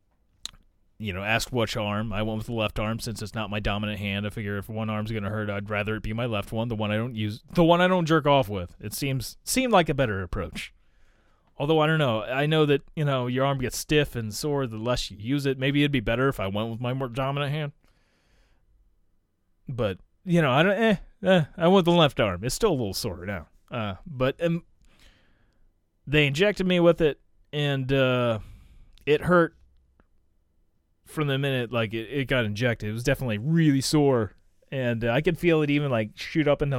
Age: 30-49